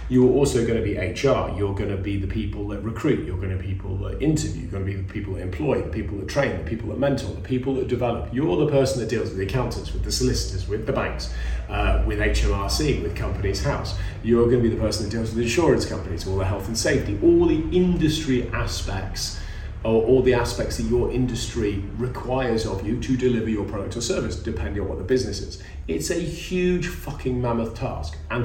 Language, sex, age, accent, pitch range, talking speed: English, male, 30-49, British, 95-120 Hz, 235 wpm